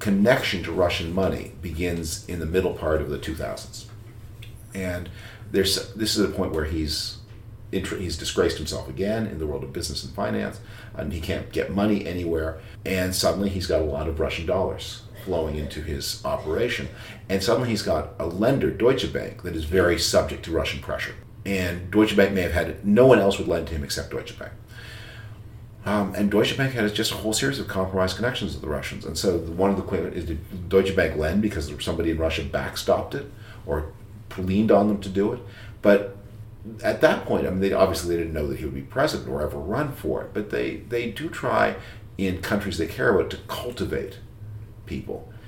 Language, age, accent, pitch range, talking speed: English, 40-59, American, 85-110 Hz, 205 wpm